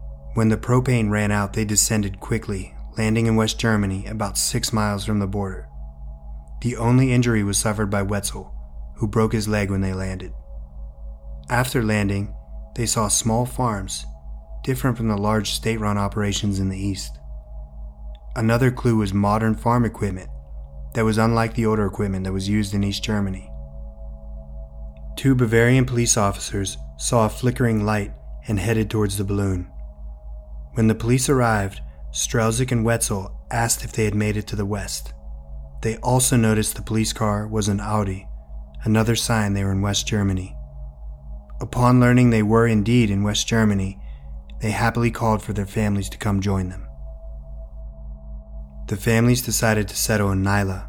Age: 30-49